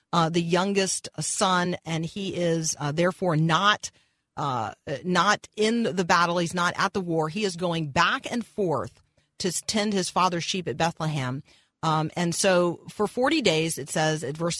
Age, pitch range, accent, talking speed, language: 40-59, 145-180 Hz, American, 175 wpm, English